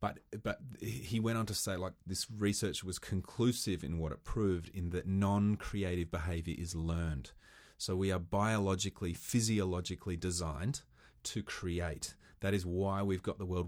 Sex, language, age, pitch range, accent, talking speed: male, English, 30-49, 90-110 Hz, Australian, 160 wpm